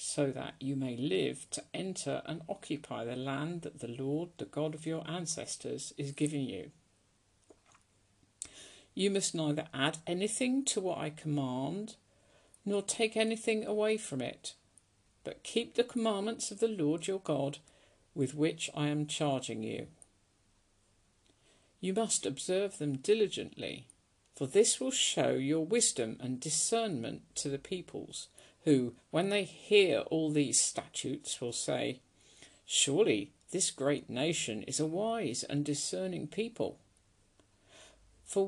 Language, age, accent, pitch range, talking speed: English, 50-69, British, 135-195 Hz, 135 wpm